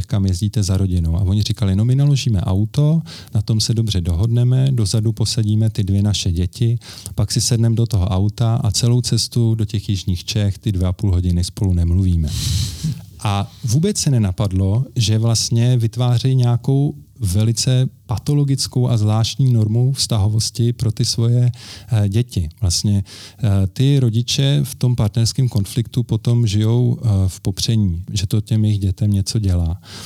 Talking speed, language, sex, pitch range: 155 wpm, Slovak, male, 100-115 Hz